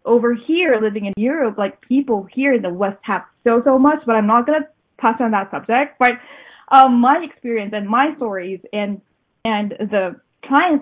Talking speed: 195 wpm